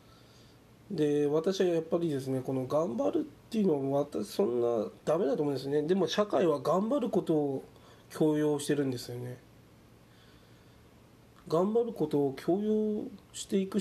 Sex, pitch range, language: male, 130-170 Hz, Japanese